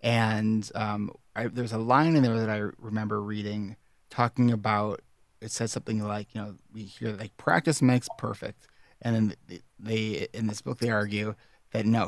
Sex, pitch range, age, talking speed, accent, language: male, 110-130 Hz, 30-49, 175 wpm, American, English